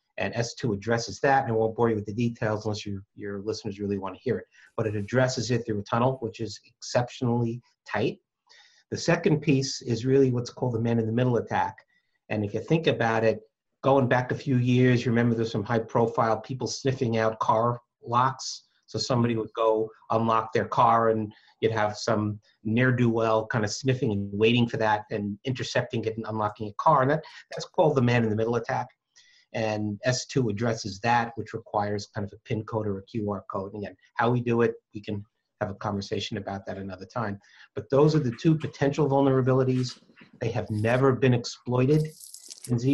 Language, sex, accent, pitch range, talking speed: English, male, American, 110-130 Hz, 195 wpm